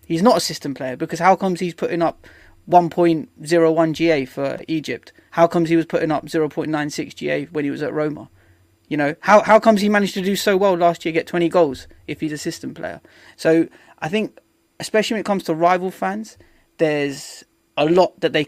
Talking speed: 210 wpm